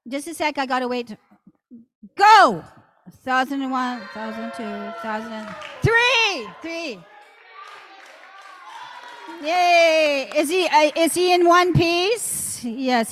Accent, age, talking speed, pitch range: American, 50-69, 100 wpm, 235-330 Hz